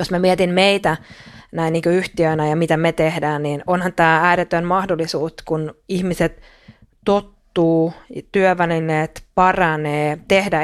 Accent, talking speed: native, 125 wpm